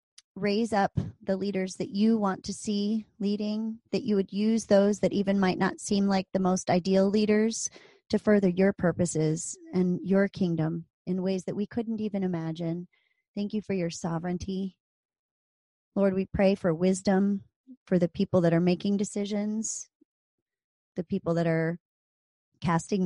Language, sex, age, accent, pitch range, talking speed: English, male, 30-49, American, 180-210 Hz, 160 wpm